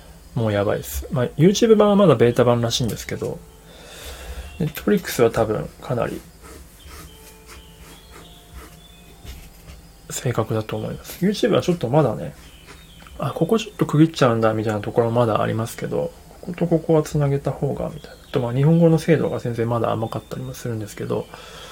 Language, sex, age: Japanese, male, 20-39